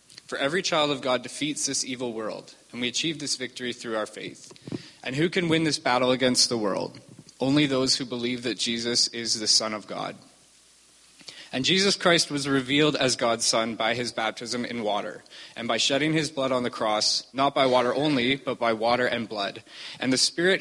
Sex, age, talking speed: male, 20-39, 205 wpm